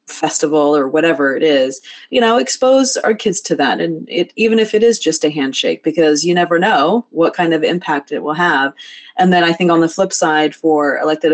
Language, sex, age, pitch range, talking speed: English, female, 30-49, 155-185 Hz, 220 wpm